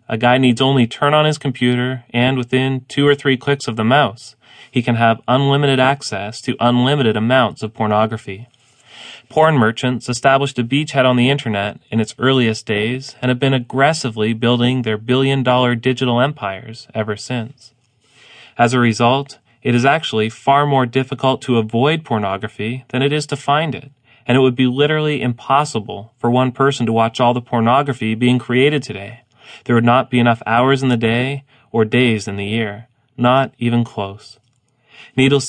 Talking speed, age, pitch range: 175 wpm, 30-49, 115-135 Hz